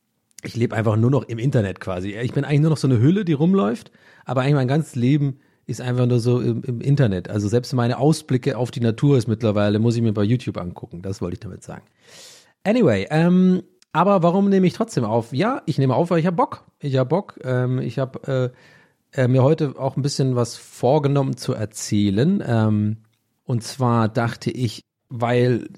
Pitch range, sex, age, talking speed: 115-145 Hz, male, 40-59, 200 wpm